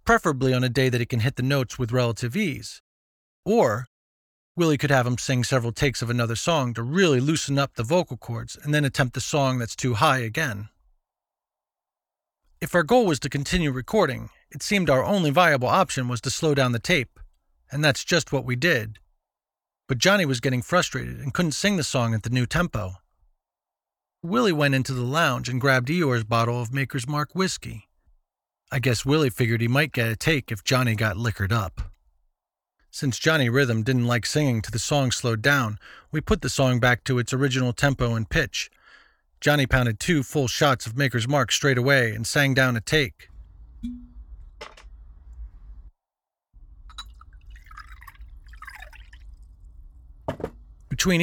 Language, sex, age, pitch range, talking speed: English, male, 40-59, 115-145 Hz, 170 wpm